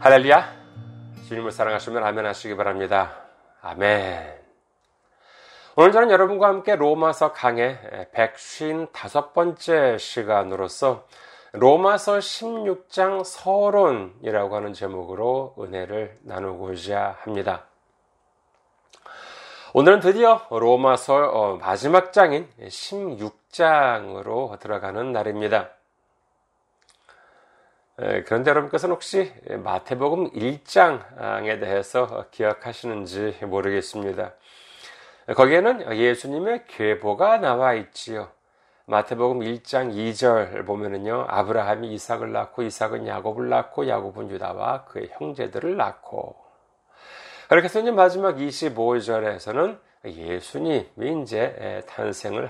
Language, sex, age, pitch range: Korean, male, 30-49, 105-160 Hz